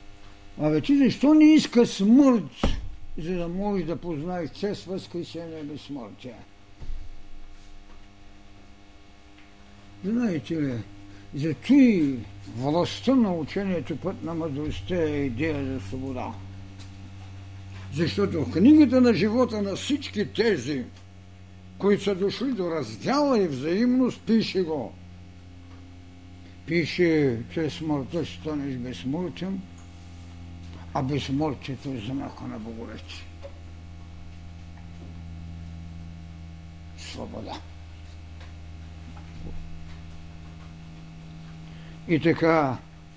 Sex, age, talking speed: male, 60-79, 80 wpm